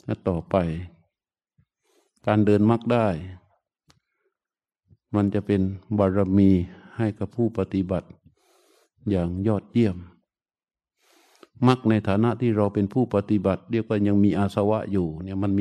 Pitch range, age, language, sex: 100-120 Hz, 60-79, Thai, male